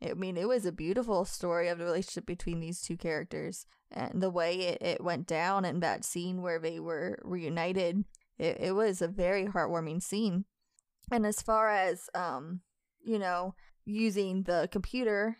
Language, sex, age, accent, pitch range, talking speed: English, female, 20-39, American, 175-215 Hz, 175 wpm